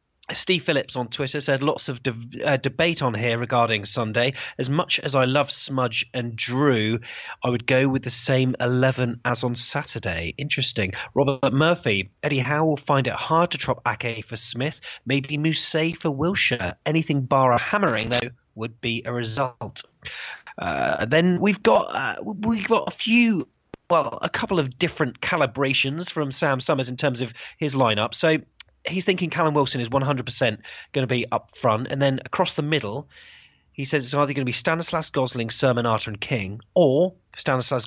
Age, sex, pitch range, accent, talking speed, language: 30-49, male, 115-150 Hz, British, 180 wpm, English